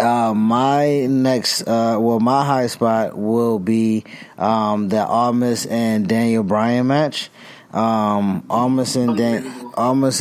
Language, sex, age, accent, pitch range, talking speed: English, male, 20-39, American, 105-120 Hz, 130 wpm